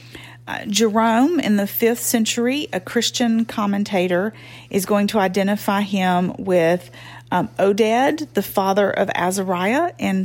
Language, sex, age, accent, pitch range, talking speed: English, female, 40-59, American, 180-235 Hz, 130 wpm